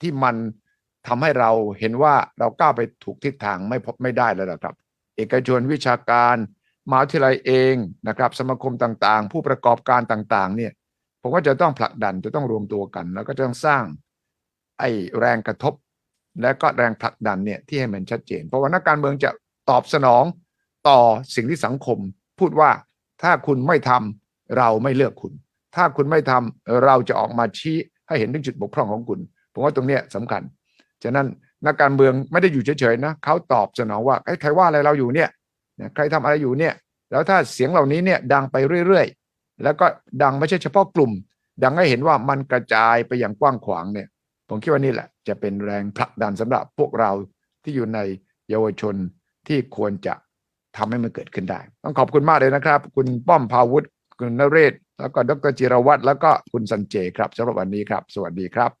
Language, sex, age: English, male, 60-79